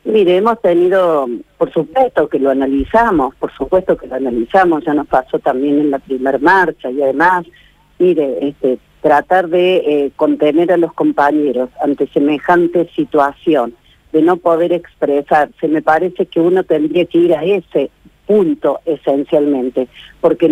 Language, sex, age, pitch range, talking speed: Spanish, female, 50-69, 150-200 Hz, 150 wpm